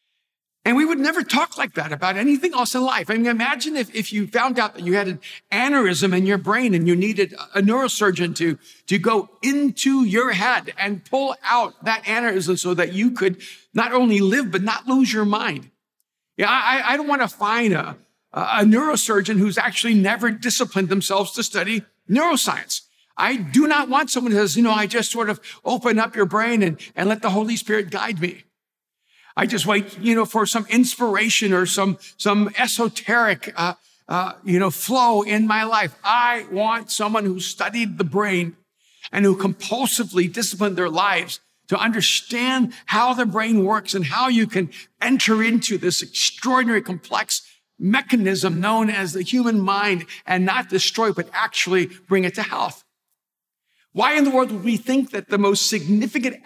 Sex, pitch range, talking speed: male, 195-240 Hz, 185 wpm